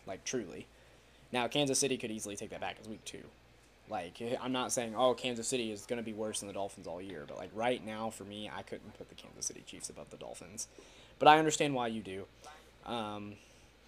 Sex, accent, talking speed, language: male, American, 230 wpm, English